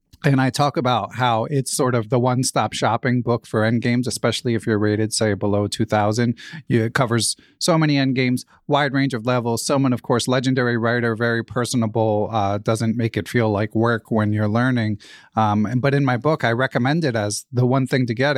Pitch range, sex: 115-145 Hz, male